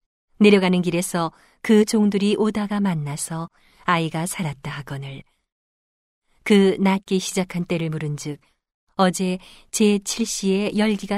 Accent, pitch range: native, 165-210 Hz